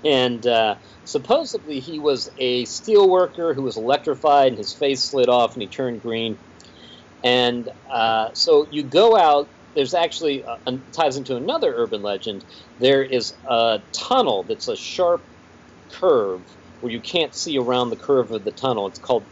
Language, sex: English, male